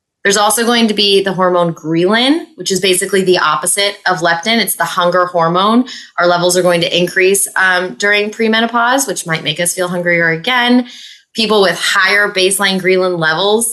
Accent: American